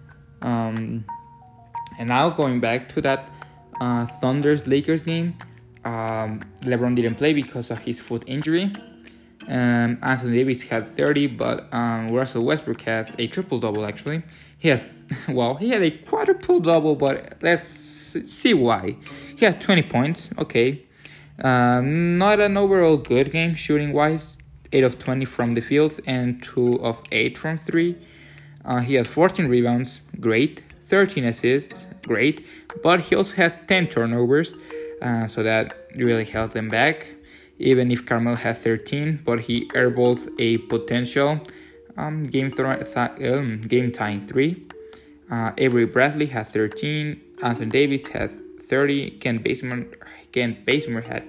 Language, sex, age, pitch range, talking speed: English, male, 20-39, 120-155 Hz, 140 wpm